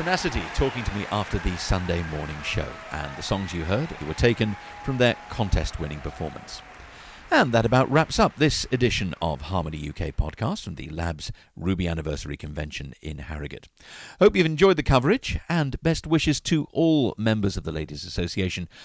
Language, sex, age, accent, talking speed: English, male, 50-69, British, 170 wpm